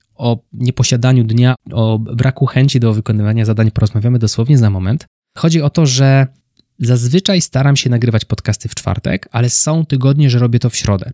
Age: 20-39